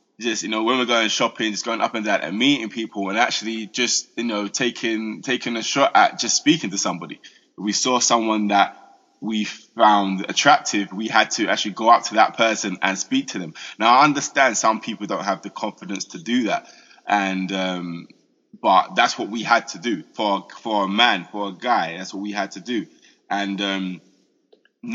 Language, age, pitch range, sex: English, 20-39, 105-150 Hz, male